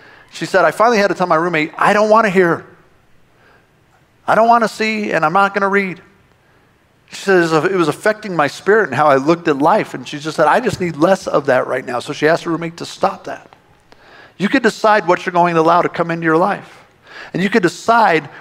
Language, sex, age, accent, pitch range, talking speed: English, male, 50-69, American, 160-205 Hz, 245 wpm